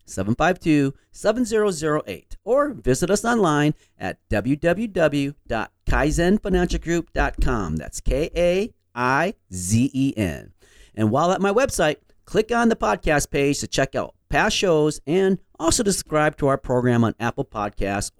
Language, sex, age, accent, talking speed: English, male, 40-59, American, 110 wpm